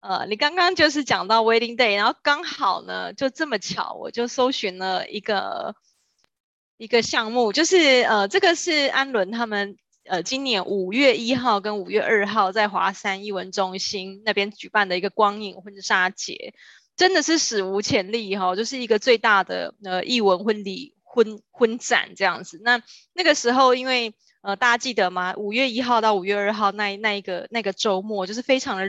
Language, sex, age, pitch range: Chinese, female, 20-39, 200-250 Hz